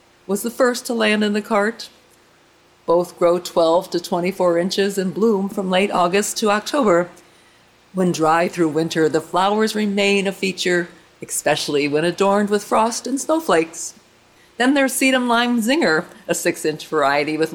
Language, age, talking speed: English, 40-59, 160 wpm